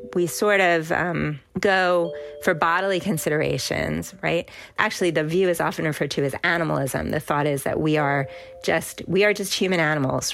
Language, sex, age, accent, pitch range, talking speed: English, female, 30-49, American, 155-205 Hz, 175 wpm